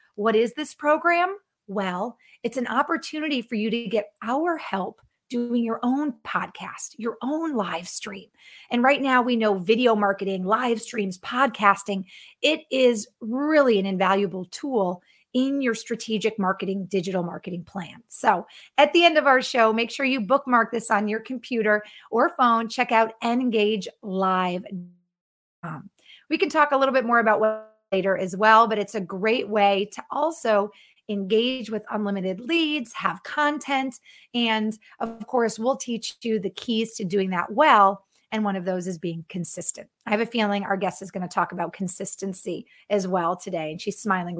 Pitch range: 195-255 Hz